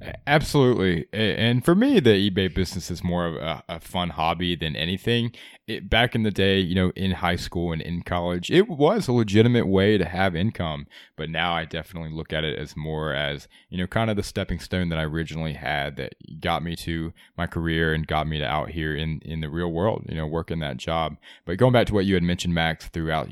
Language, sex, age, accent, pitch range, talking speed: English, male, 20-39, American, 80-95 Hz, 230 wpm